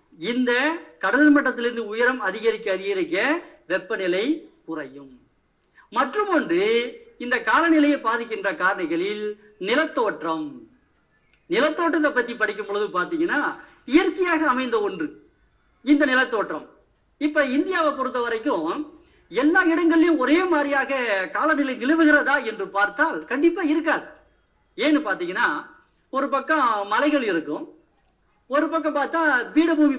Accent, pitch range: native, 235-320 Hz